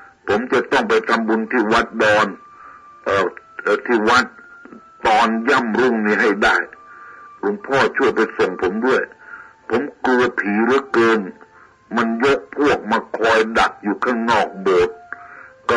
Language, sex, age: Thai, male, 60-79